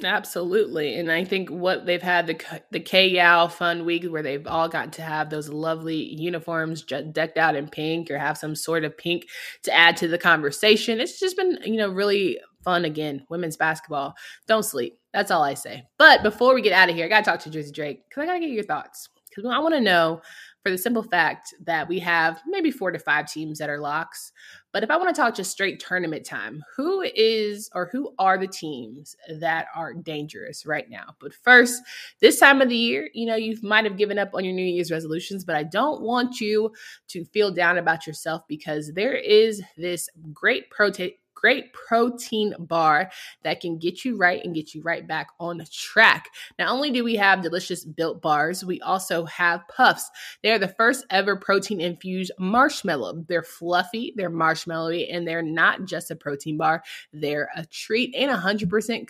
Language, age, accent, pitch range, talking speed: English, 20-39, American, 160-215 Hz, 205 wpm